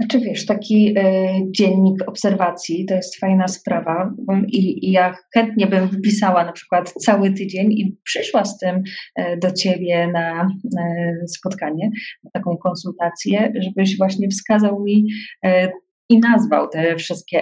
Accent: native